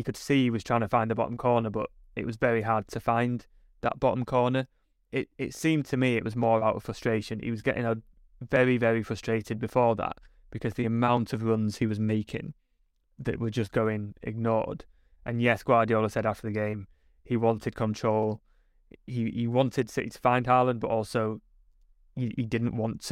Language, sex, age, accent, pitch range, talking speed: English, male, 20-39, British, 110-120 Hz, 200 wpm